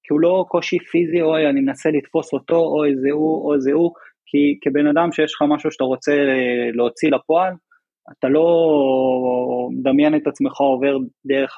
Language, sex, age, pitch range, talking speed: Hebrew, male, 20-39, 130-165 Hz, 160 wpm